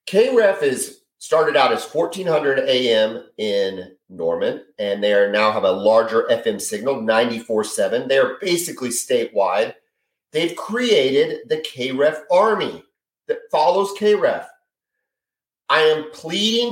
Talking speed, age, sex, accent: 120 wpm, 40-59, male, American